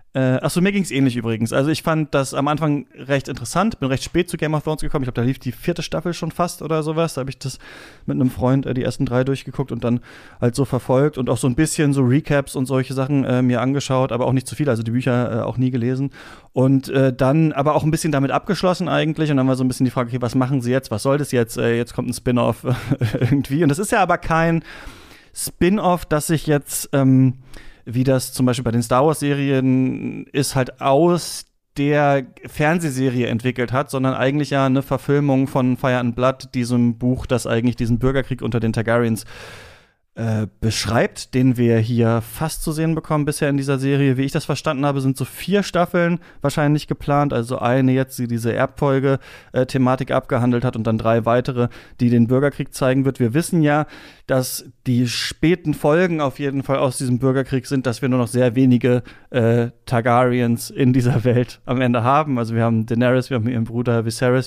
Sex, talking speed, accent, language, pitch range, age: male, 215 wpm, German, German, 125-145 Hz, 30-49